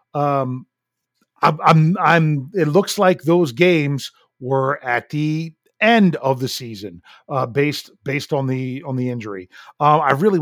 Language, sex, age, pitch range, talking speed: English, male, 40-59, 135-180 Hz, 155 wpm